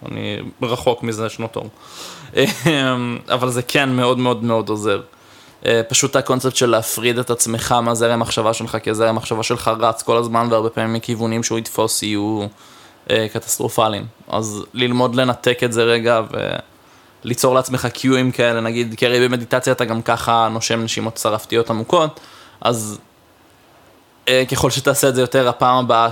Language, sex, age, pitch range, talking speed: Hebrew, male, 20-39, 115-125 Hz, 145 wpm